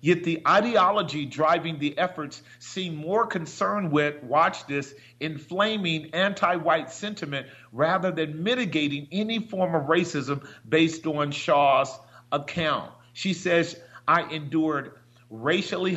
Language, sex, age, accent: English, male, 40-59, American